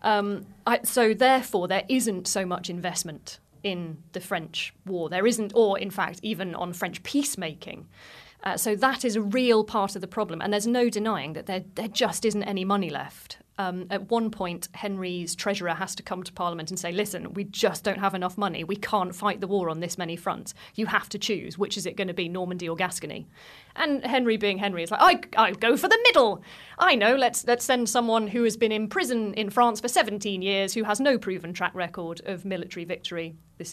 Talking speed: 220 wpm